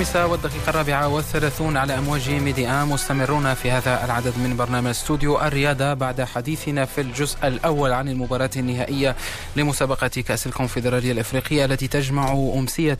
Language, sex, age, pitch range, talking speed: Arabic, male, 20-39, 120-140 Hz, 140 wpm